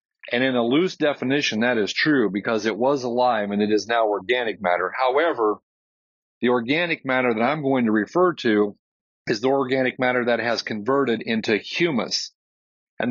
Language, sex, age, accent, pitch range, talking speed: English, male, 40-59, American, 110-130 Hz, 175 wpm